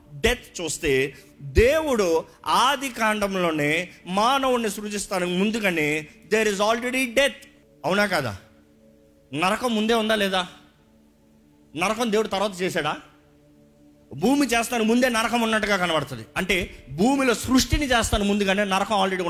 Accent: native